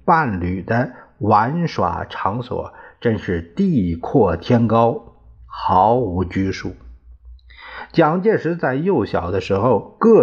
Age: 50-69